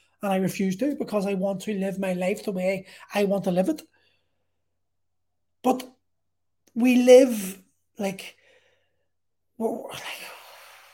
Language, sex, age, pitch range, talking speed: English, male, 30-49, 190-245 Hz, 130 wpm